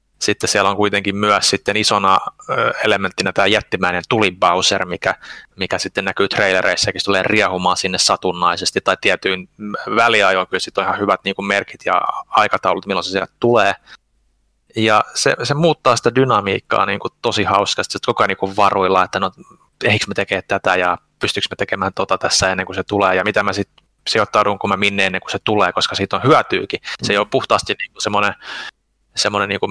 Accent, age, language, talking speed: native, 20-39, Finnish, 190 wpm